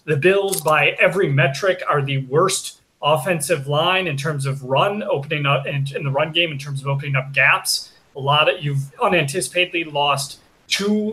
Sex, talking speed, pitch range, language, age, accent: male, 185 wpm, 140-185 Hz, English, 30-49, American